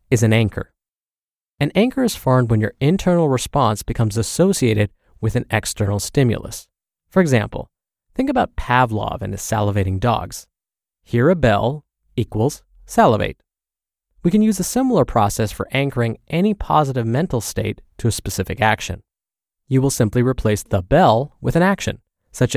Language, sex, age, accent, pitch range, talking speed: English, male, 20-39, American, 105-145 Hz, 150 wpm